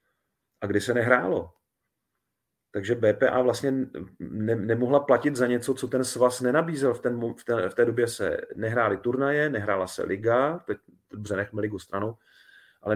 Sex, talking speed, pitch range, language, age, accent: male, 160 wpm, 110-130 Hz, Czech, 30-49, native